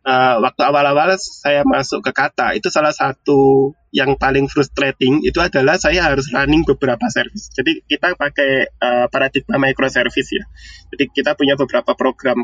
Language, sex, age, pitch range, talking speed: Indonesian, male, 20-39, 130-155 Hz, 145 wpm